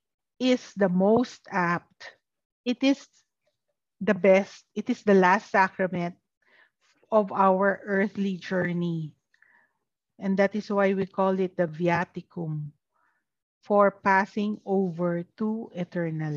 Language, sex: English, female